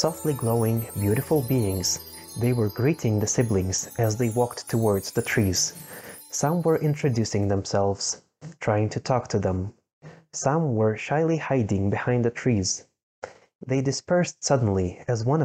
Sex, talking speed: male, 140 wpm